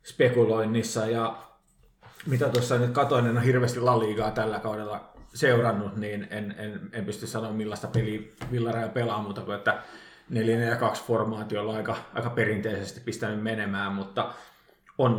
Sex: male